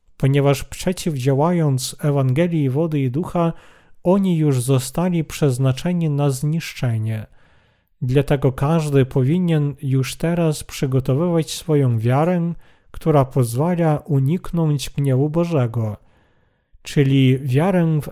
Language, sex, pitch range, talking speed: Polish, male, 130-165 Hz, 95 wpm